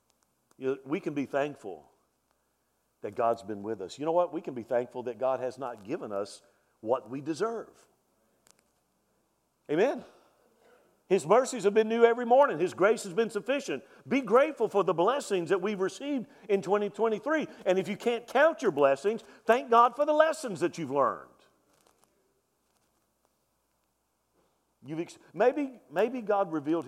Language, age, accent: English, 50-69, American